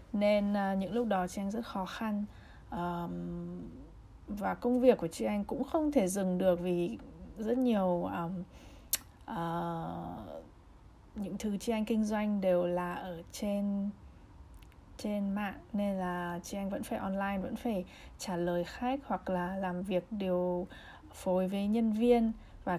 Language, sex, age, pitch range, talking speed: Vietnamese, female, 20-39, 180-225 Hz, 150 wpm